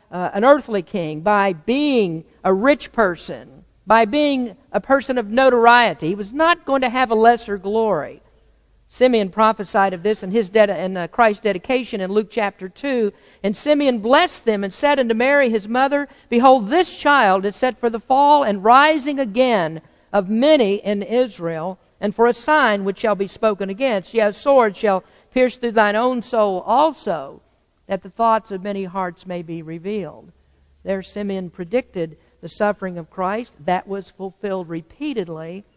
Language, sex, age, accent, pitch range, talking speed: English, female, 50-69, American, 190-250 Hz, 175 wpm